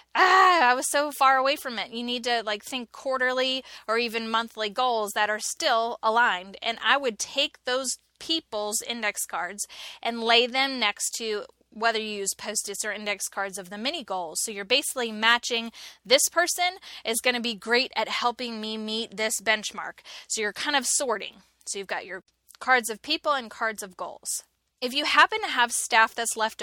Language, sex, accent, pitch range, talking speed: English, female, American, 215-265 Hz, 195 wpm